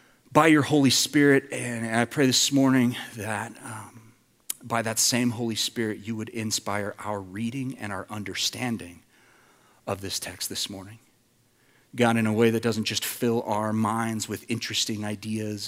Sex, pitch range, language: male, 105-125 Hz, English